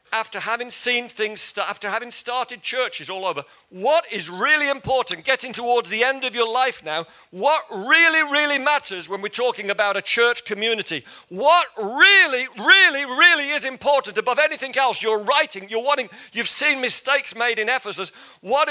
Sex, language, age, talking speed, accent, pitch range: male, English, 50-69, 170 wpm, British, 175-250 Hz